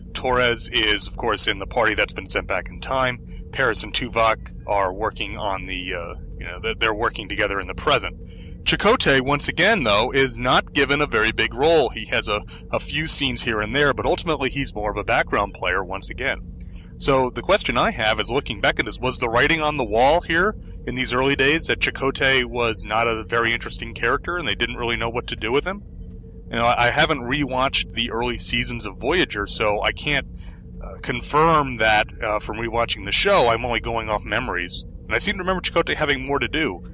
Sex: male